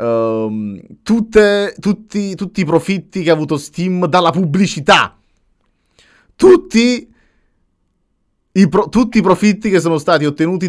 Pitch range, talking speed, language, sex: 125-185 Hz, 125 wpm, Italian, male